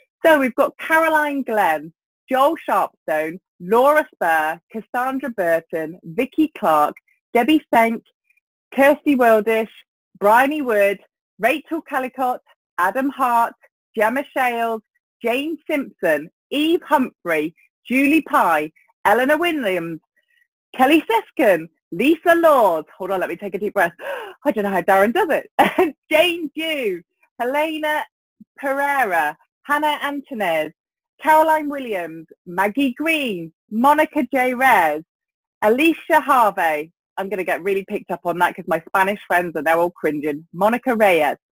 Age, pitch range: 30-49, 190-305 Hz